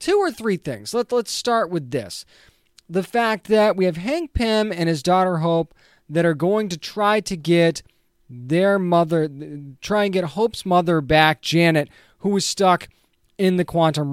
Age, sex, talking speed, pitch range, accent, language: 20-39, male, 180 wpm, 165-220 Hz, American, English